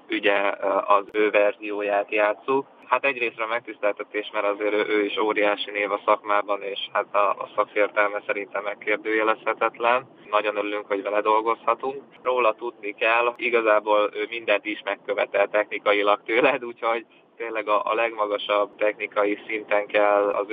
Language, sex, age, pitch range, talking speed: Hungarian, male, 20-39, 105-110 Hz, 135 wpm